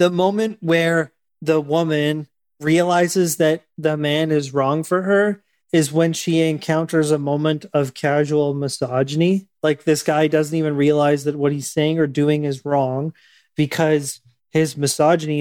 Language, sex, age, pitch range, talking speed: English, male, 30-49, 150-175 Hz, 150 wpm